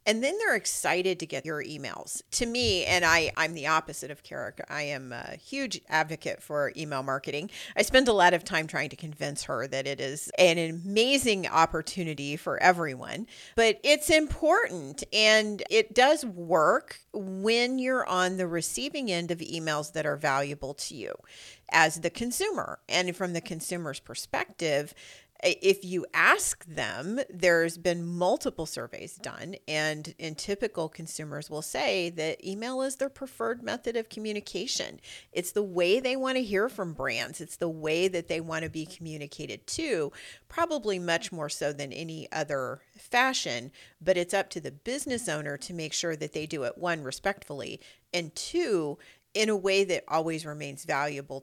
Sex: female